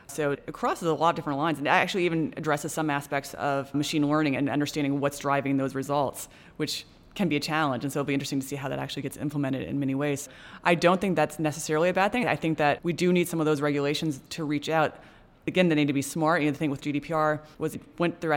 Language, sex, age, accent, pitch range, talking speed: English, female, 20-39, American, 140-155 Hz, 265 wpm